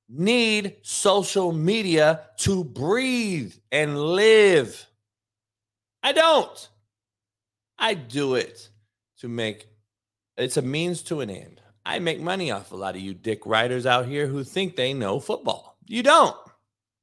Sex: male